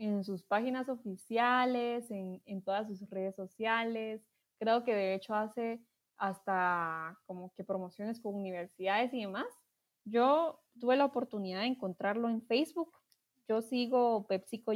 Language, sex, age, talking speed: Spanish, female, 20-39, 140 wpm